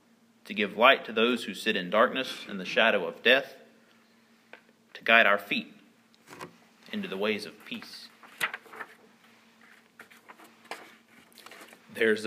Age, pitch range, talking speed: 30-49, 200-230 Hz, 115 wpm